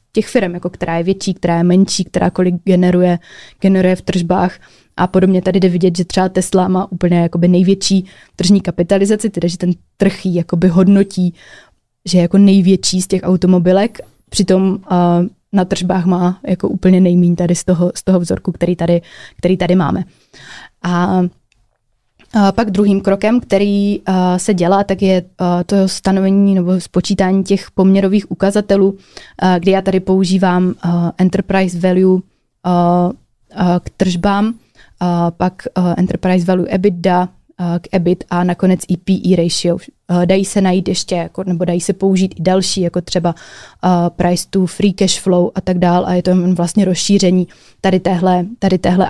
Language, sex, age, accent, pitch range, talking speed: Czech, female, 20-39, native, 180-195 Hz, 165 wpm